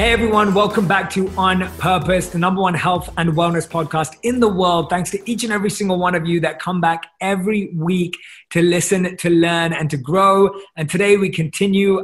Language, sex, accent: English, male, British